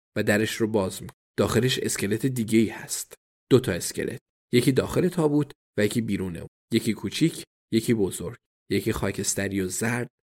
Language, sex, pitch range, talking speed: Persian, male, 105-130 Hz, 165 wpm